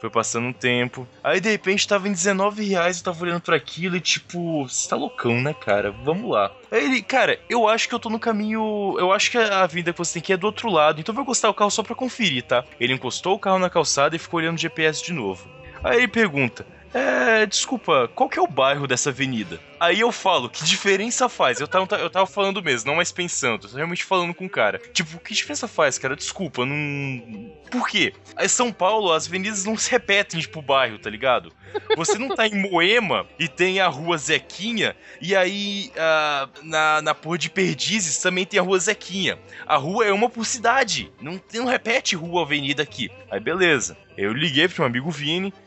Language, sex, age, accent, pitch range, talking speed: Portuguese, male, 20-39, Brazilian, 155-210 Hz, 225 wpm